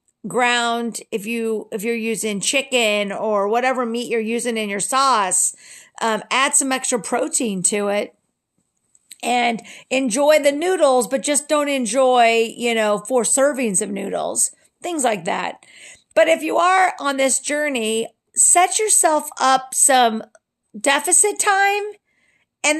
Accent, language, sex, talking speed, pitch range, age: American, English, female, 140 wpm, 225-280 Hz, 50-69